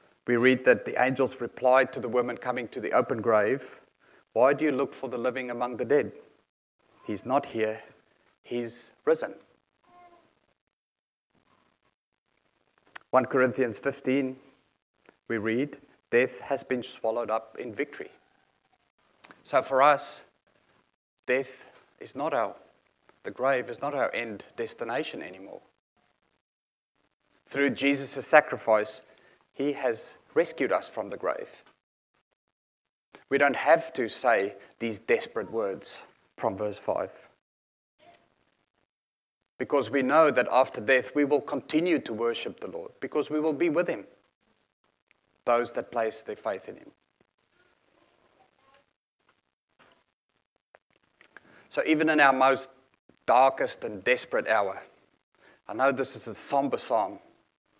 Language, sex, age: English, male, 30-49